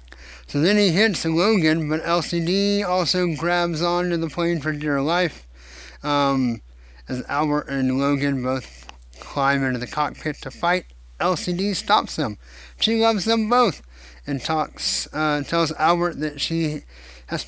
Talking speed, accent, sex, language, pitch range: 145 wpm, American, male, English, 120-180 Hz